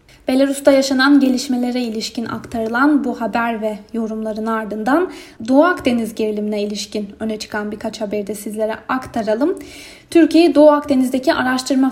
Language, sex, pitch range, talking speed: Turkish, female, 225-300 Hz, 125 wpm